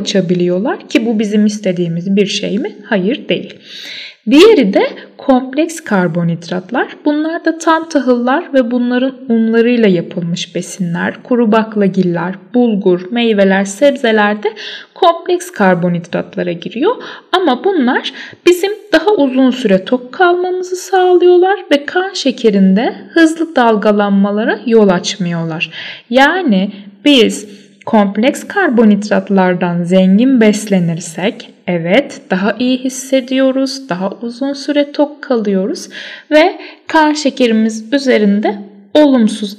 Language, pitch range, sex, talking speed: Turkish, 195-280 Hz, female, 100 wpm